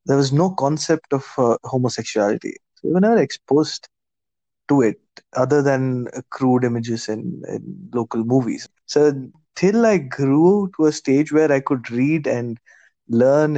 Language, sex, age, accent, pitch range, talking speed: English, male, 20-39, Indian, 120-155 Hz, 160 wpm